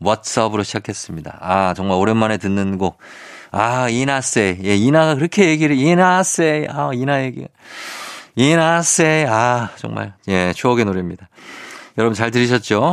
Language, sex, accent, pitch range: Korean, male, native, 105-155 Hz